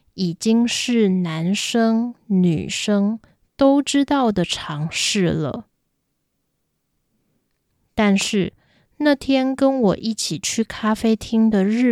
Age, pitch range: 20-39, 185-250 Hz